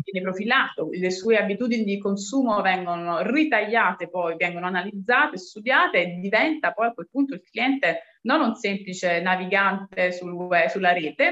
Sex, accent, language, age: female, native, Italian, 20-39